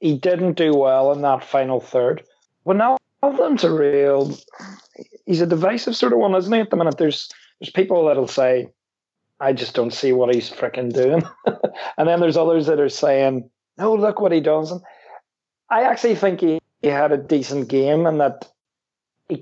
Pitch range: 130-165 Hz